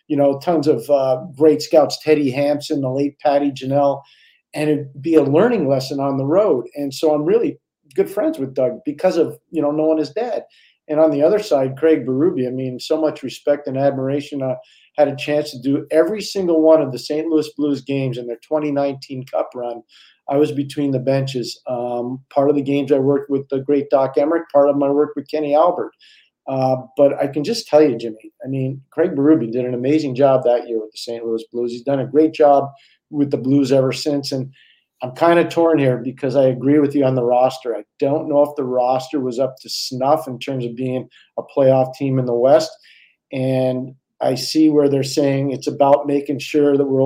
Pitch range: 130-150 Hz